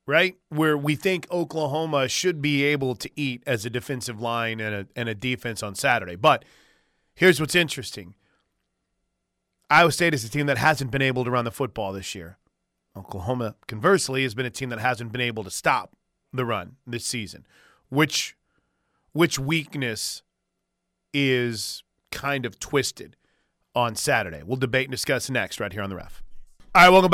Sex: male